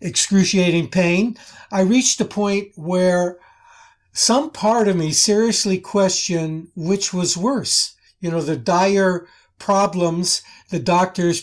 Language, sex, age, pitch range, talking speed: English, male, 60-79, 160-200 Hz, 120 wpm